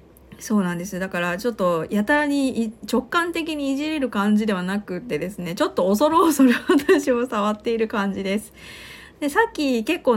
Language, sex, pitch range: Japanese, female, 185-270 Hz